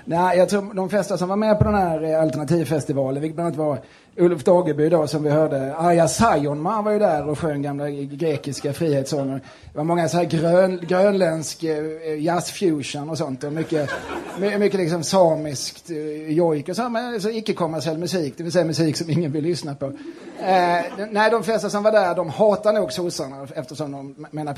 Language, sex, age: Swedish, male, 30-49